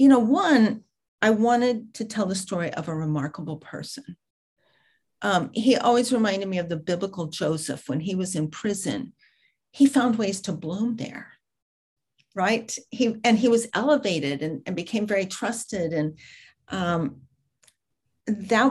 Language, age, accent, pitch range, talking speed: English, 50-69, American, 170-230 Hz, 150 wpm